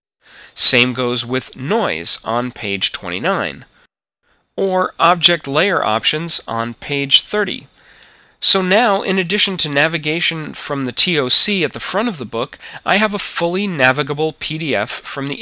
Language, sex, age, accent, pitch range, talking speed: English, male, 30-49, American, 125-160 Hz, 145 wpm